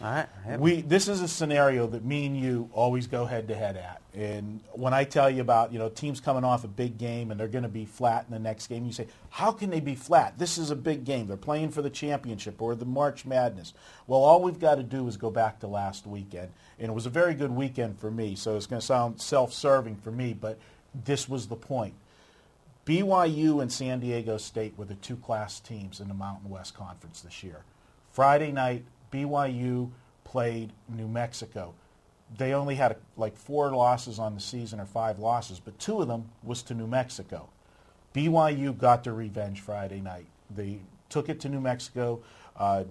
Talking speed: 205 wpm